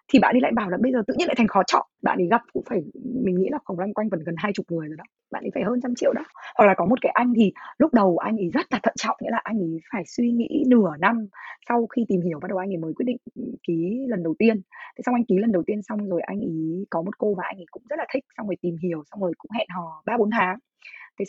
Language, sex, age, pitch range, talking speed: Vietnamese, female, 20-39, 185-260 Hz, 315 wpm